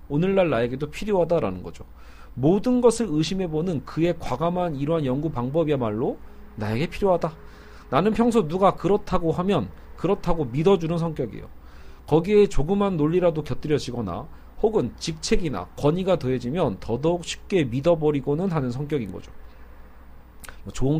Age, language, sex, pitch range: 40-59, Korean, male, 120-190 Hz